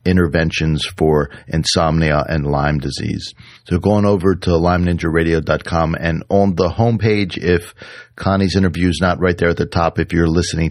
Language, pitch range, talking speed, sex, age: English, 80-95 Hz, 155 wpm, male, 40-59